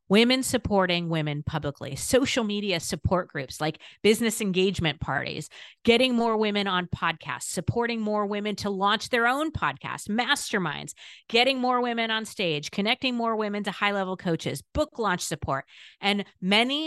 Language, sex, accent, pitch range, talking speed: English, female, American, 155-210 Hz, 150 wpm